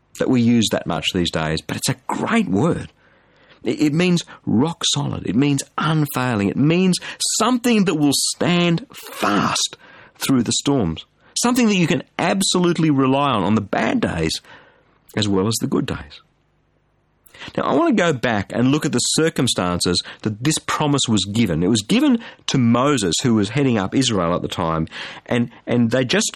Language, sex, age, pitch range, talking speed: English, male, 50-69, 110-155 Hz, 180 wpm